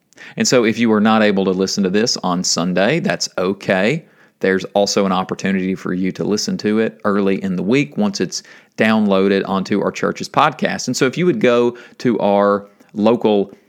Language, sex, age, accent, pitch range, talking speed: English, male, 40-59, American, 95-120 Hz, 195 wpm